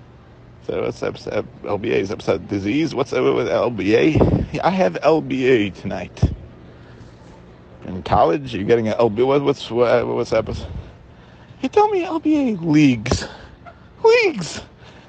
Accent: American